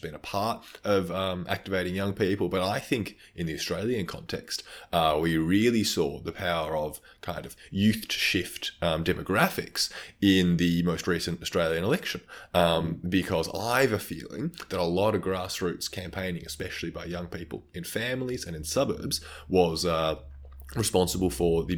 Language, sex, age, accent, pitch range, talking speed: English, male, 20-39, Australian, 80-100 Hz, 170 wpm